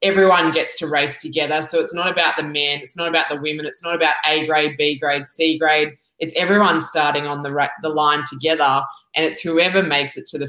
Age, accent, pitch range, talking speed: 20-39, Australian, 150-170 Hz, 235 wpm